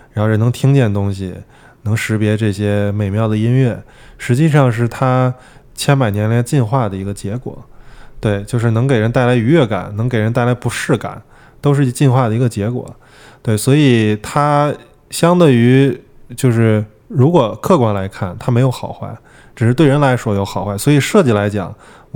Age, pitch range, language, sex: 20-39, 105-130 Hz, Chinese, male